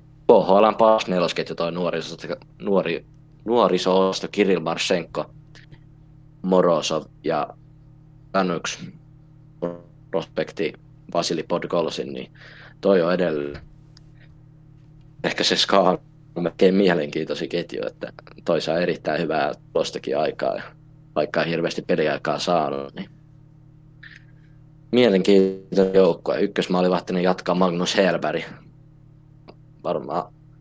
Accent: native